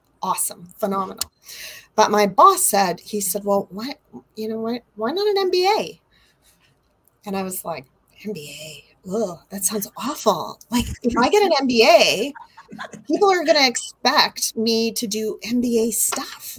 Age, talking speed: 30-49, 150 wpm